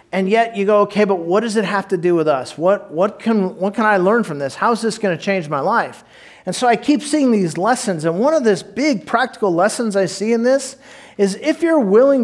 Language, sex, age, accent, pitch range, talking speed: English, male, 40-59, American, 165-225 Hz, 260 wpm